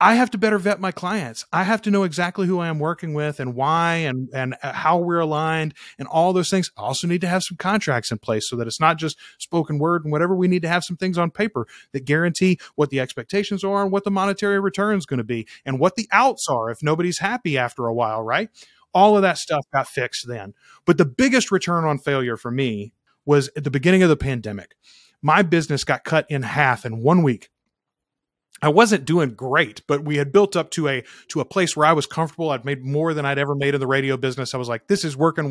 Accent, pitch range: American, 130-185 Hz